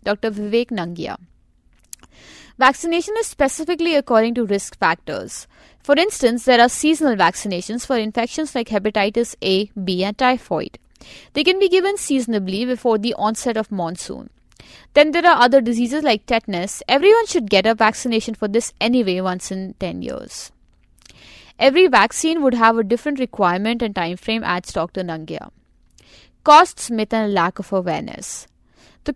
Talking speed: 150 wpm